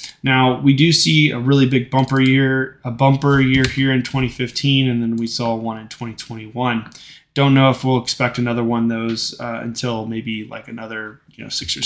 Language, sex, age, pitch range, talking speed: English, male, 20-39, 125-150 Hz, 200 wpm